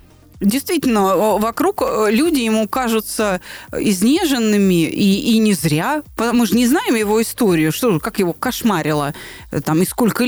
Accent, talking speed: native, 135 wpm